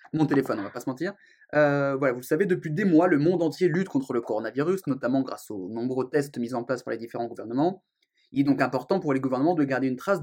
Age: 20-39